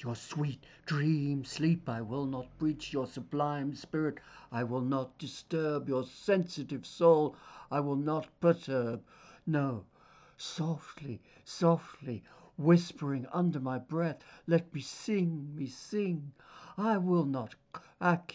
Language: Russian